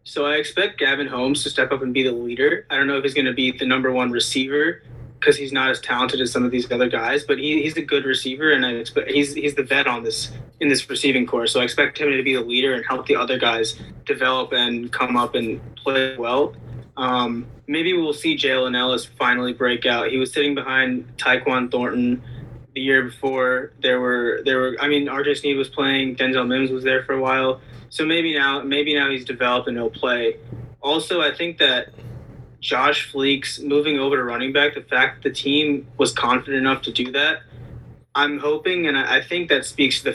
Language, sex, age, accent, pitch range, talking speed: English, male, 20-39, American, 125-145 Hz, 225 wpm